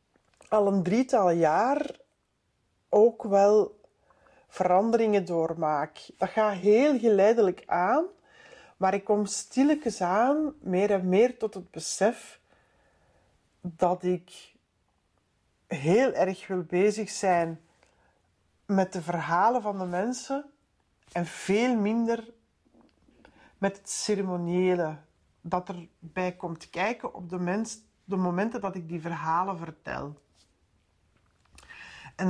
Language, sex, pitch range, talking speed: Dutch, female, 170-210 Hz, 105 wpm